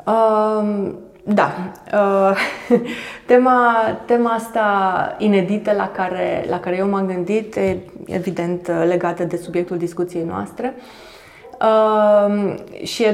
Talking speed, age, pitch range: 95 wpm, 20-39, 170-205 Hz